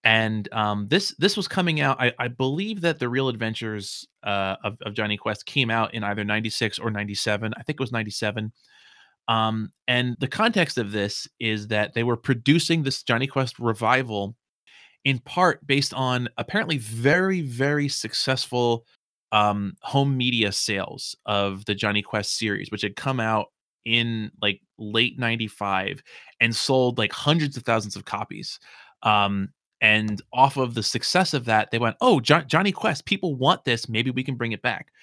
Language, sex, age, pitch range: English, male, 20-39, 110-135 Hz